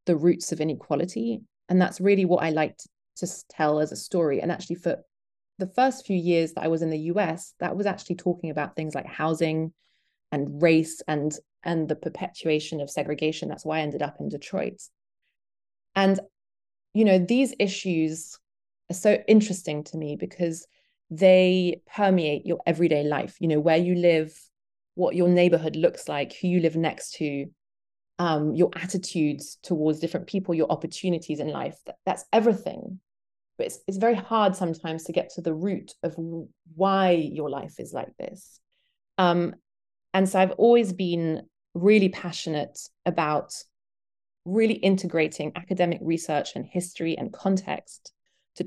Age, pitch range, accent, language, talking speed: 20-39, 155-190 Hz, British, English, 160 wpm